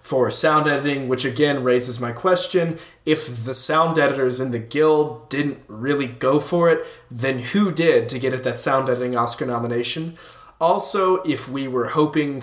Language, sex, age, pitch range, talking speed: English, male, 20-39, 120-145 Hz, 175 wpm